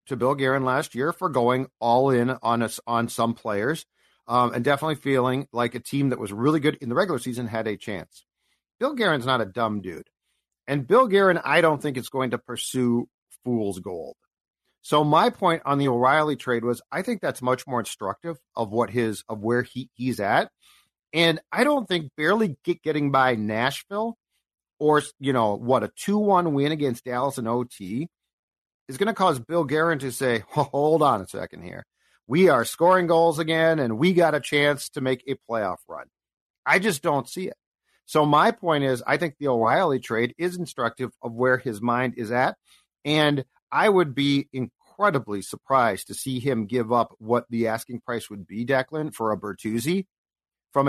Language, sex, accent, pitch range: English, male, American, 120-155 Hz